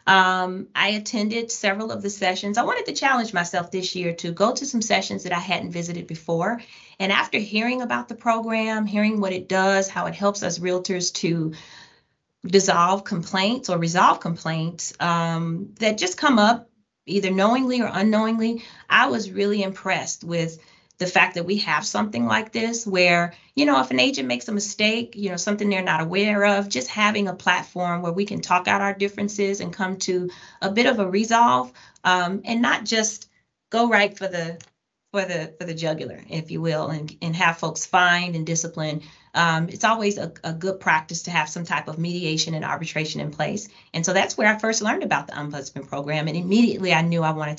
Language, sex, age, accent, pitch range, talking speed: English, female, 30-49, American, 165-210 Hz, 200 wpm